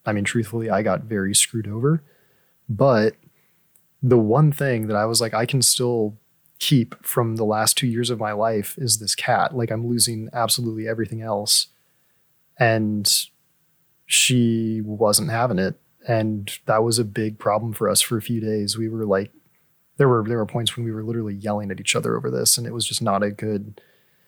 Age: 20-39